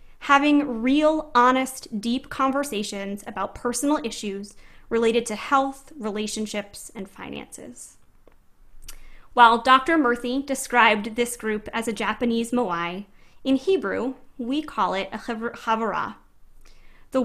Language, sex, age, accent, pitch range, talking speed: English, female, 20-39, American, 210-270 Hz, 110 wpm